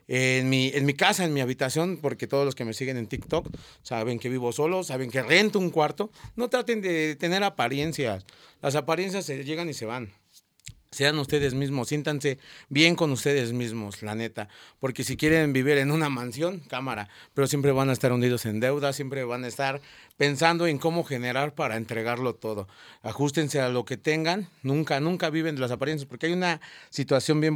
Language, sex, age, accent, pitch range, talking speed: Spanish, male, 40-59, Mexican, 120-150 Hz, 195 wpm